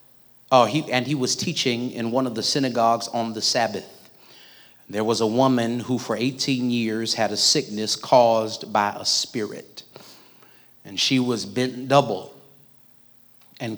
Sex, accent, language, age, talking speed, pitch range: male, American, English, 30-49, 155 wpm, 110-130 Hz